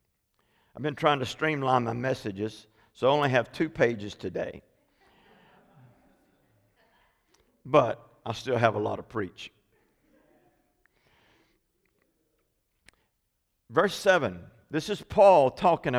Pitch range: 110-145 Hz